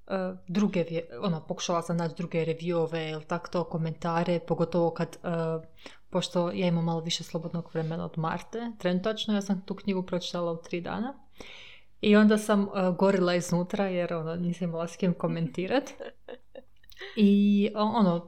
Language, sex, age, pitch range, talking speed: Croatian, female, 20-39, 170-210 Hz, 150 wpm